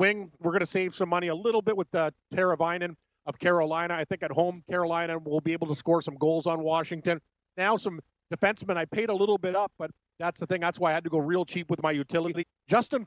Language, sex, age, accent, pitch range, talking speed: English, male, 40-59, American, 160-190 Hz, 255 wpm